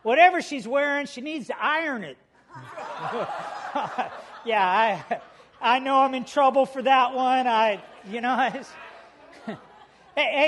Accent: American